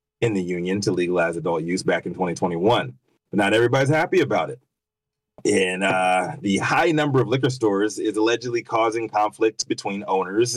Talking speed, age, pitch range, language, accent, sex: 170 wpm, 30-49, 100-120 Hz, English, American, male